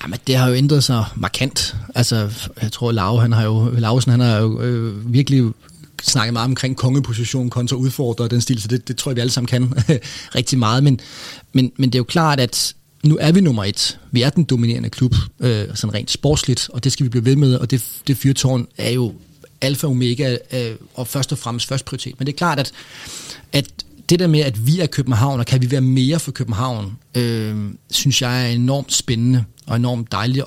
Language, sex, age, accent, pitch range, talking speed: Danish, male, 30-49, native, 120-140 Hz, 230 wpm